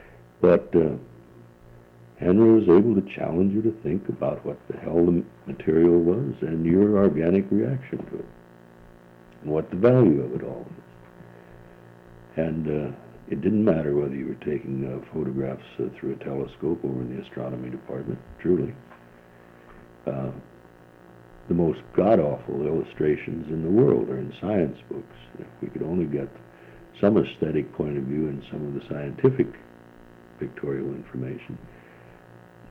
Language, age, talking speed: English, 60-79, 150 wpm